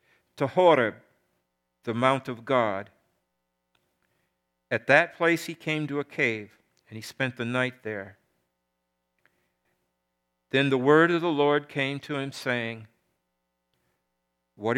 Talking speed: 125 wpm